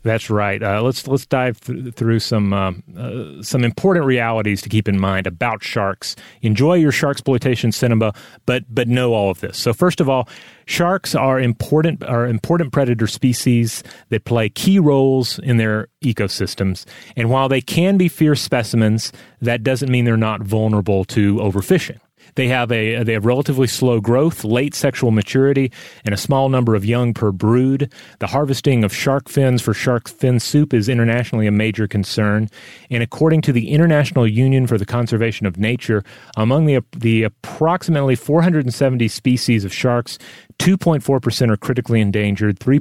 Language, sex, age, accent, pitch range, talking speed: English, male, 30-49, American, 110-135 Hz, 170 wpm